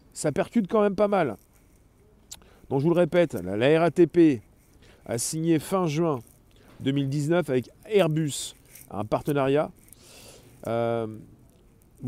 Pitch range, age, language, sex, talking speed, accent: 120-175 Hz, 40-59, French, male, 115 wpm, French